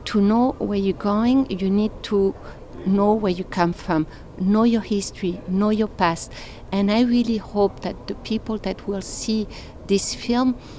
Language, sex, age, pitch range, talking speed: English, female, 50-69, 185-220 Hz, 170 wpm